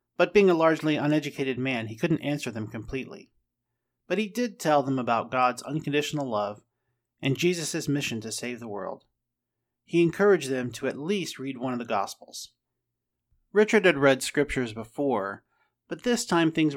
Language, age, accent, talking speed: English, 30-49, American, 170 wpm